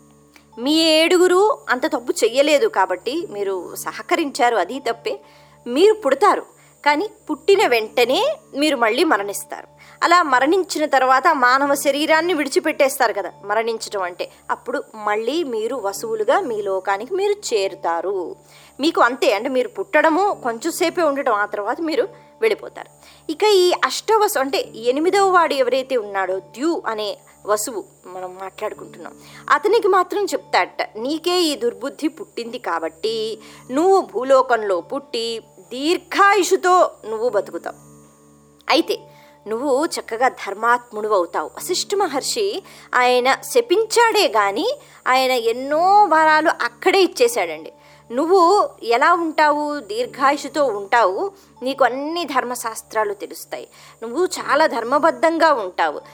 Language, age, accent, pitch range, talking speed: Telugu, 20-39, native, 230-375 Hz, 105 wpm